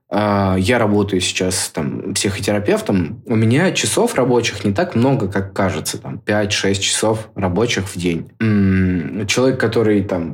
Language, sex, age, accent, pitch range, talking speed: Russian, male, 20-39, native, 95-115 Hz, 140 wpm